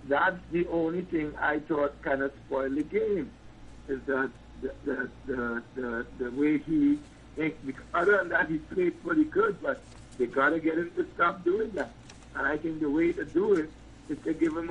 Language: English